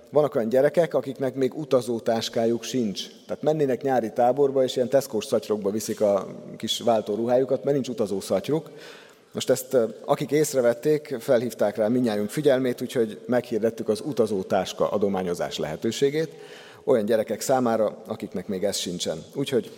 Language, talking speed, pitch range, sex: Hungarian, 135 wpm, 105-135 Hz, male